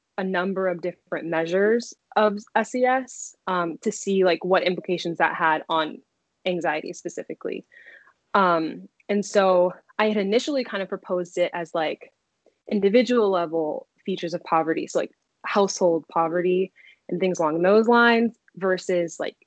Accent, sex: American, female